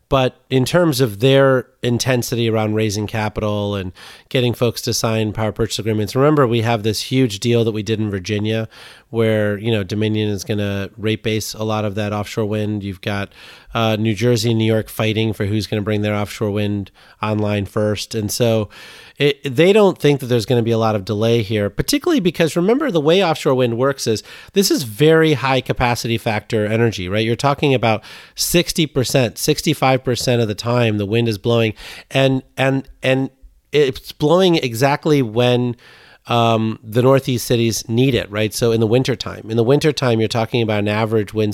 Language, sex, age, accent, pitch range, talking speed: English, male, 30-49, American, 110-130 Hz, 190 wpm